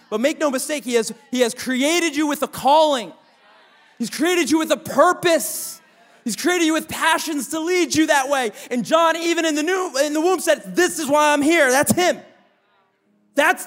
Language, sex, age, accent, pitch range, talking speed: English, male, 30-49, American, 250-320 Hz, 195 wpm